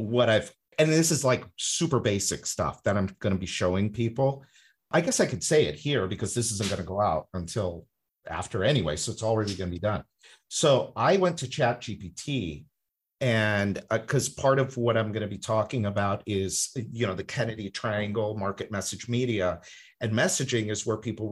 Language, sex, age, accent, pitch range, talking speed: English, male, 50-69, American, 105-140 Hz, 205 wpm